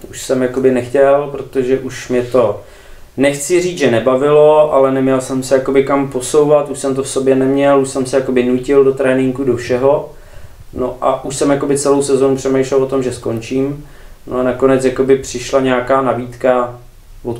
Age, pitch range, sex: 20-39, 120-135 Hz, male